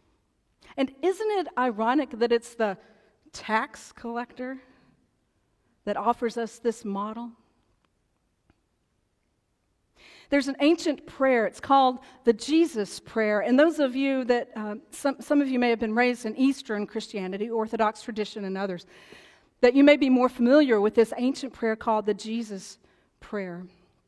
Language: English